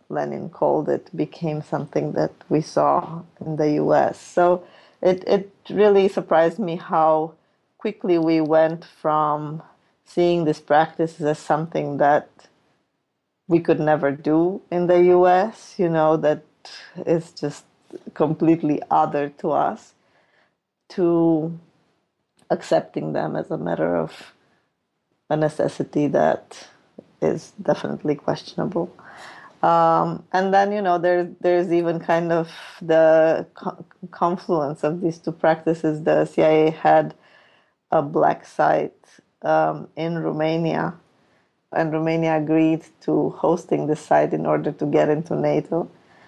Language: English